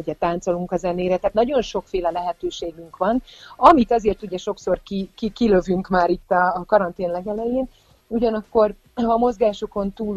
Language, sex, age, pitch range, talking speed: Hungarian, female, 30-49, 175-215 Hz, 155 wpm